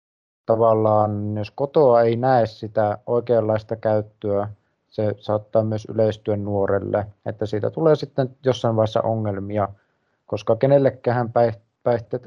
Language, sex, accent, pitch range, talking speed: Finnish, male, native, 105-125 Hz, 110 wpm